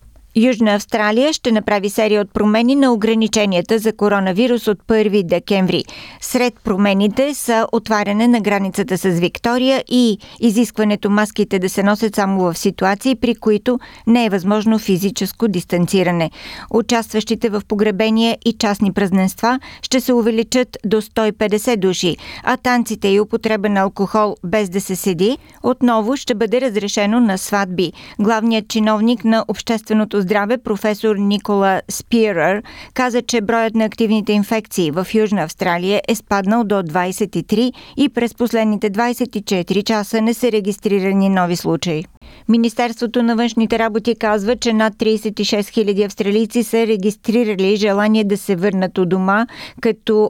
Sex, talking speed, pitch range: female, 140 wpm, 200-230 Hz